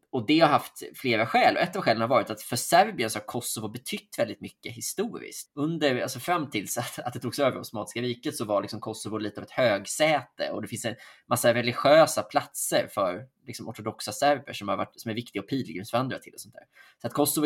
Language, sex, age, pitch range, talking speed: Swedish, male, 20-39, 105-130 Hz, 225 wpm